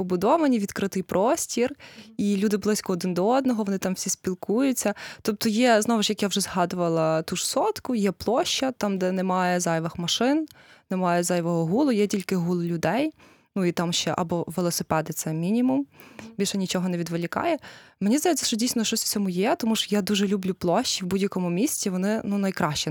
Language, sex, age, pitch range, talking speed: Ukrainian, female, 20-39, 180-220 Hz, 185 wpm